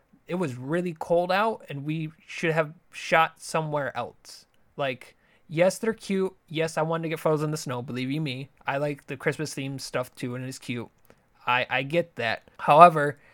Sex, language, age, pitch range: male, English, 20-39, 135-160 Hz